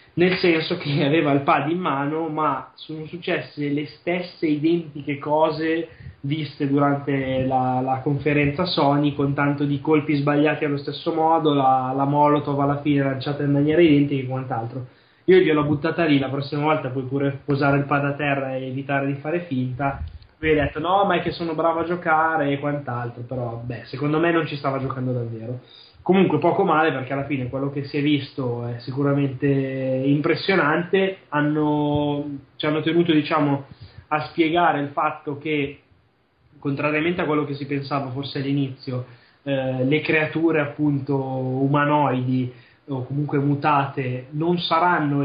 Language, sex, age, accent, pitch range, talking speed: Italian, male, 20-39, native, 135-155 Hz, 165 wpm